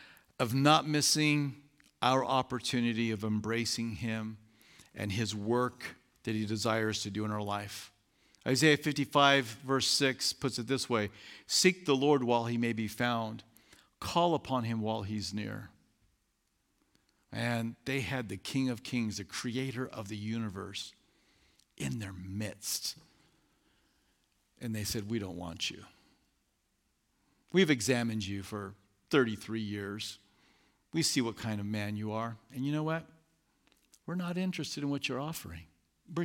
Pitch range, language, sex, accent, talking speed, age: 110-145 Hz, English, male, American, 145 wpm, 50-69